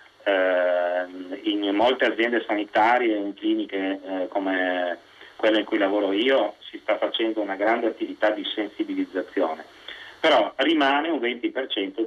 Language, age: Italian, 30-49